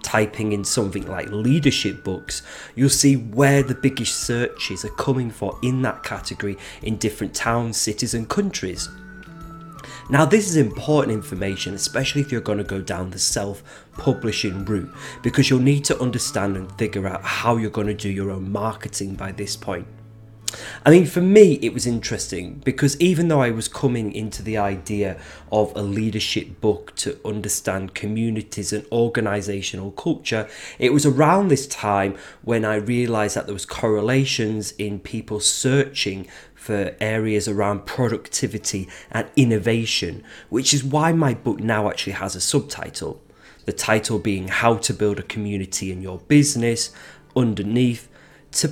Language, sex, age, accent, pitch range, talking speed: English, male, 30-49, British, 100-135 Hz, 160 wpm